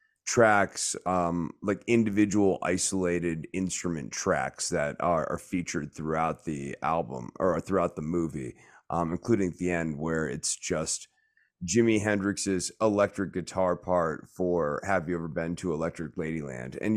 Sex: male